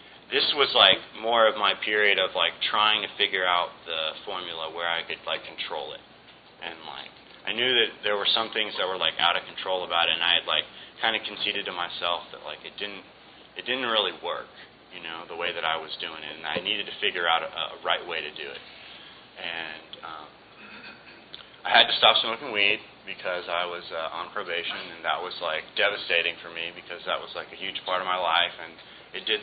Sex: male